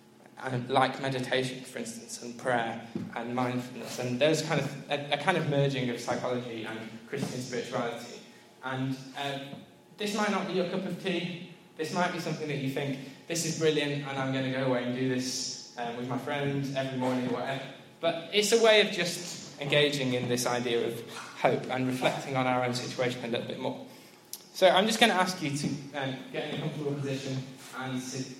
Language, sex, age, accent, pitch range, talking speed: English, male, 10-29, British, 130-165 Hz, 205 wpm